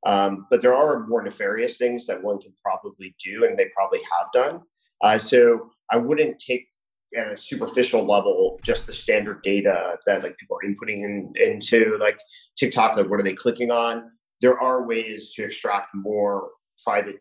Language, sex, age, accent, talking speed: English, male, 30-49, American, 180 wpm